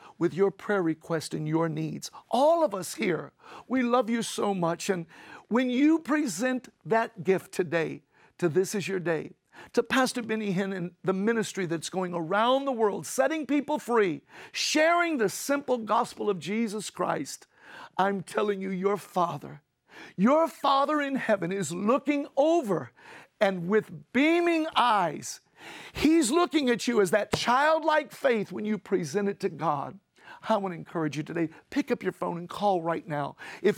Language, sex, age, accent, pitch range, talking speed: English, male, 50-69, American, 165-235 Hz, 170 wpm